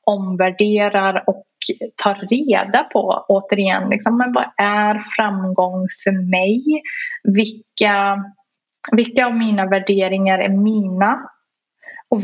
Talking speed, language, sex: 100 wpm, Swedish, female